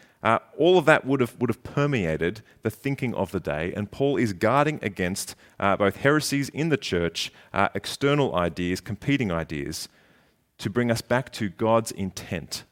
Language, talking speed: English, 175 wpm